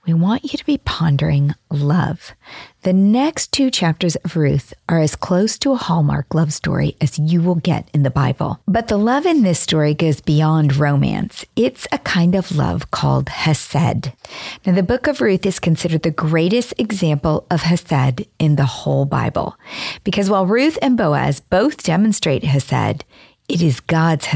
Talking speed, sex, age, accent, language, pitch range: 175 wpm, female, 40-59, American, English, 150-205 Hz